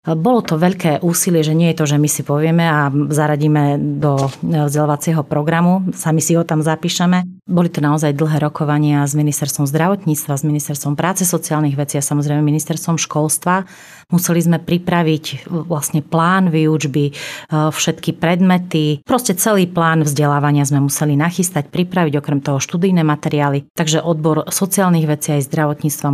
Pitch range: 145-165 Hz